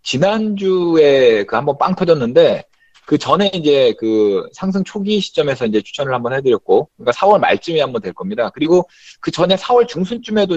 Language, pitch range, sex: Korean, 135-225 Hz, male